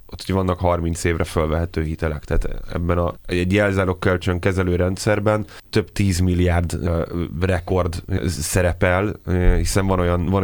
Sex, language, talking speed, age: male, Hungarian, 140 wpm, 30-49